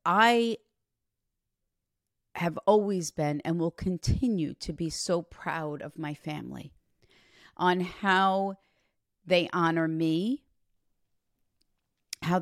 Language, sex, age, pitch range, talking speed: English, female, 40-59, 150-185 Hz, 95 wpm